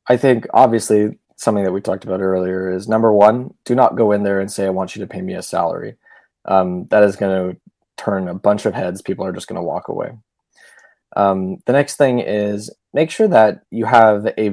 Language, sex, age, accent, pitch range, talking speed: English, male, 20-39, American, 95-120 Hz, 225 wpm